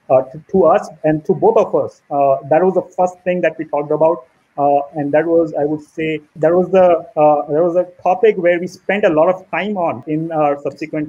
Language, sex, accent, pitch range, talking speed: English, male, Indian, 155-195 Hz, 225 wpm